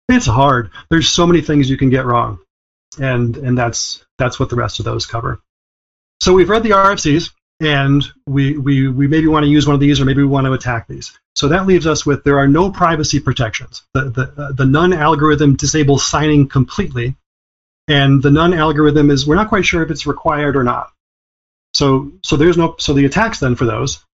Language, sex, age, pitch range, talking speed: English, male, 40-59, 125-150 Hz, 210 wpm